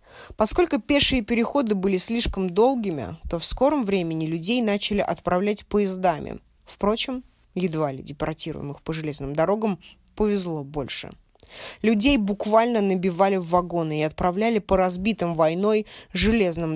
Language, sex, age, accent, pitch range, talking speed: Russian, female, 20-39, native, 160-210 Hz, 120 wpm